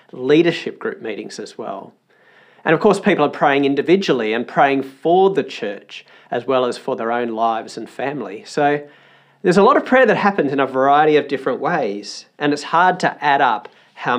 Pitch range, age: 130-165 Hz, 40-59